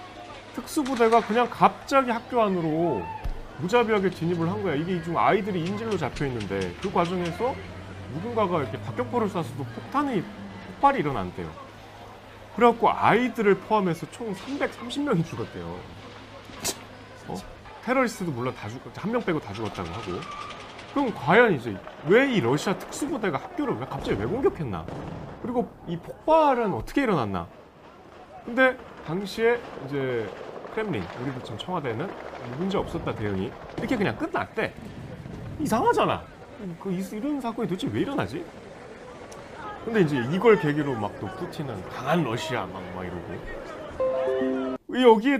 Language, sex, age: Korean, male, 30-49